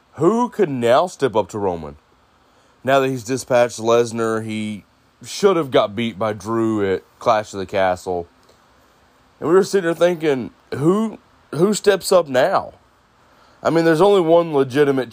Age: 20-39